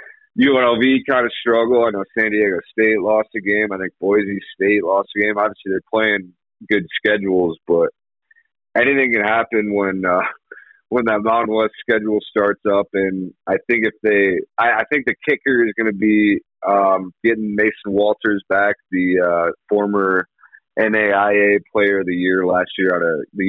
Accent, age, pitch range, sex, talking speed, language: American, 30-49, 95-110 Hz, male, 180 wpm, English